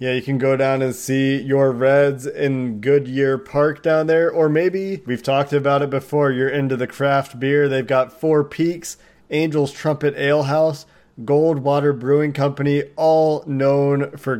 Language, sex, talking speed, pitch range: English, male, 165 wpm, 130-150 Hz